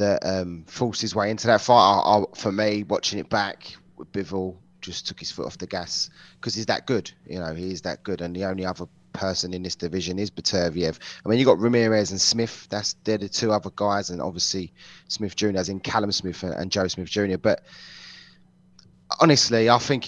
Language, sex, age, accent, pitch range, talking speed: English, male, 20-39, British, 95-120 Hz, 220 wpm